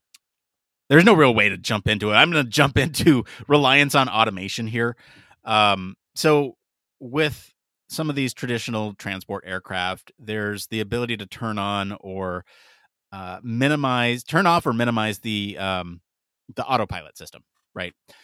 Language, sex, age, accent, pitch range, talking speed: English, male, 30-49, American, 105-135 Hz, 150 wpm